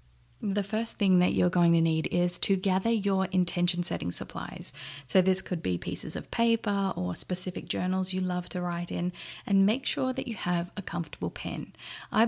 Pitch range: 170-195 Hz